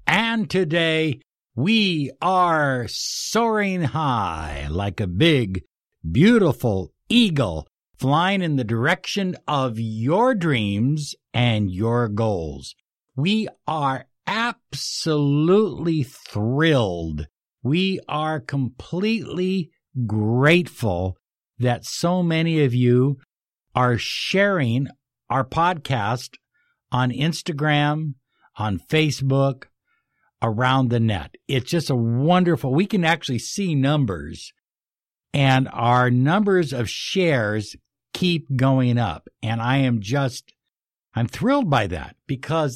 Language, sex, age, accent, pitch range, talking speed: English, male, 60-79, American, 120-170 Hz, 100 wpm